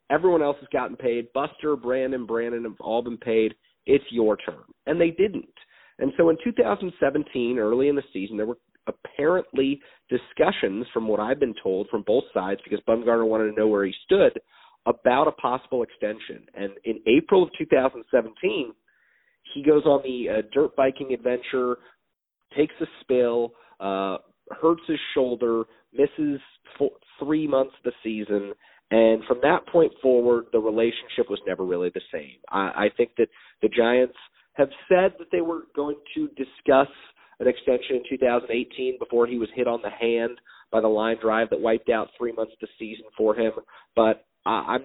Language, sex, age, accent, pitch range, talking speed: English, male, 40-59, American, 110-145 Hz, 175 wpm